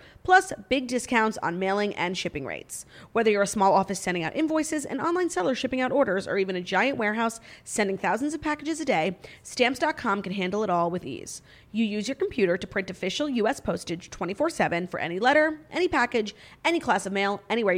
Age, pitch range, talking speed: 30-49, 195-295 Hz, 205 wpm